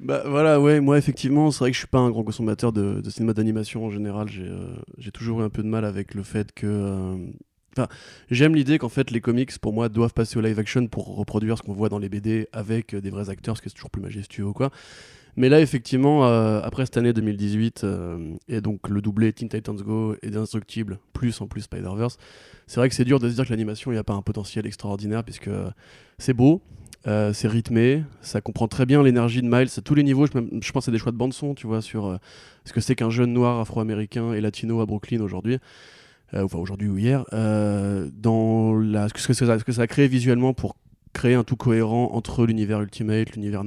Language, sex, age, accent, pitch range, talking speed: French, male, 20-39, French, 105-125 Hz, 240 wpm